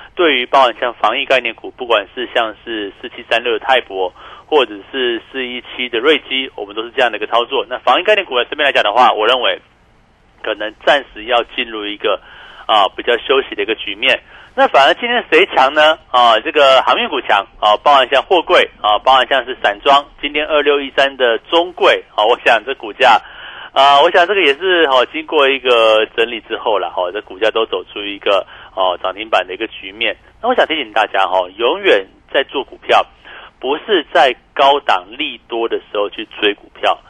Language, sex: Chinese, male